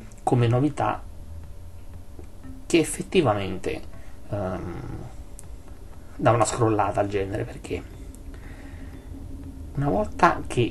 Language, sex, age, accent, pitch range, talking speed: Italian, male, 30-49, native, 95-120 Hz, 80 wpm